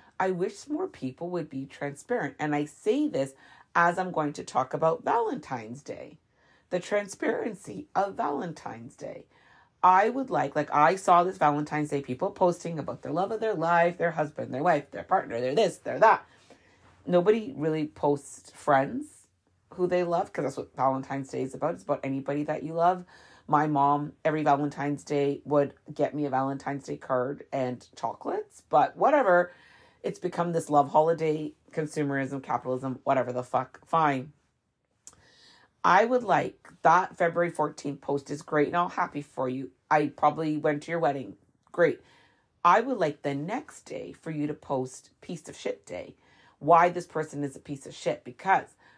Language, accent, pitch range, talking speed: English, American, 140-170 Hz, 175 wpm